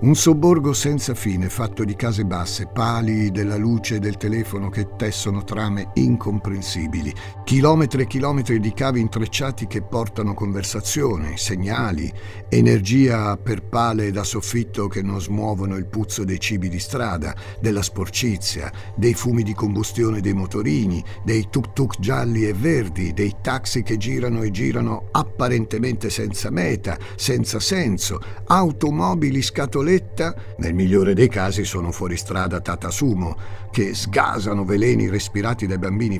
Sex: male